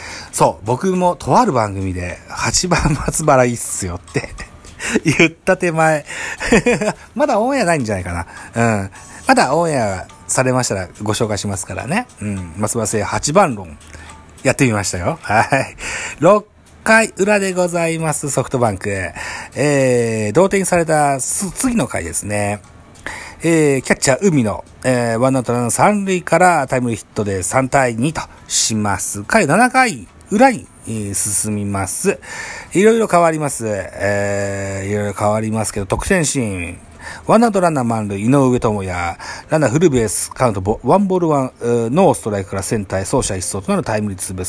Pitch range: 100-160 Hz